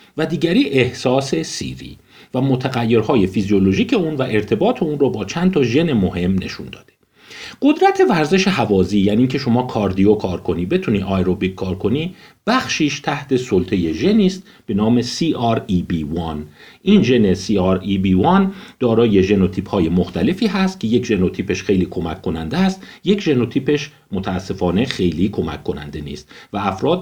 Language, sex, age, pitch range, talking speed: Persian, male, 50-69, 95-160 Hz, 140 wpm